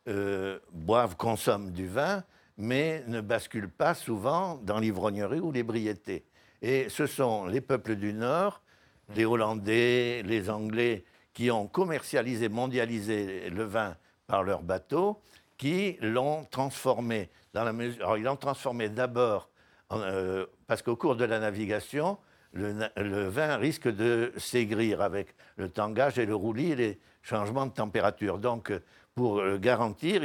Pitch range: 105-130 Hz